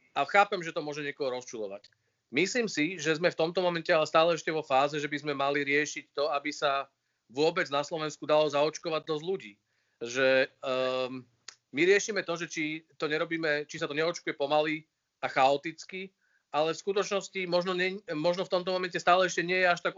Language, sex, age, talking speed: Slovak, male, 40-59, 195 wpm